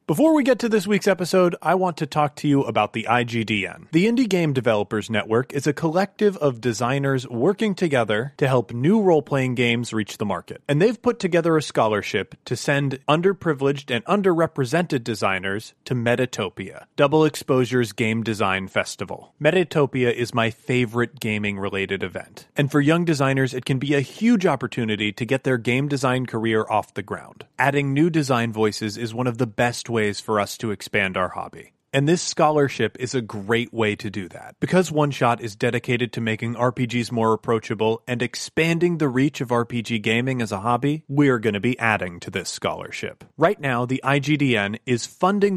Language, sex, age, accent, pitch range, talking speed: English, male, 30-49, American, 115-155 Hz, 185 wpm